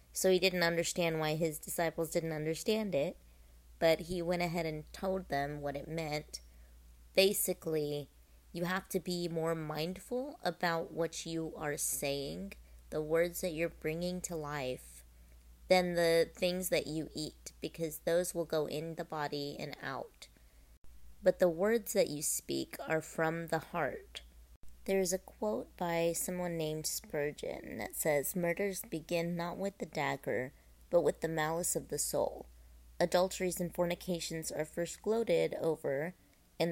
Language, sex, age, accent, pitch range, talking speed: English, female, 30-49, American, 145-180 Hz, 155 wpm